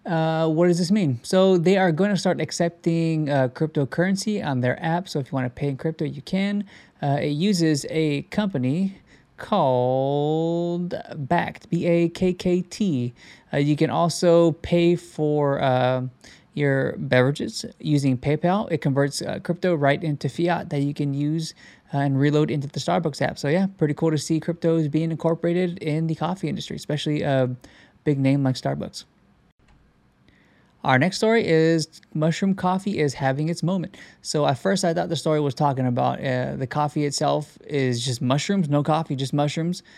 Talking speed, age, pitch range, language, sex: 170 wpm, 20-39, 140-175 Hz, English, male